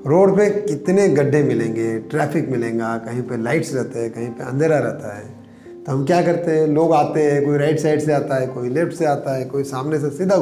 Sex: male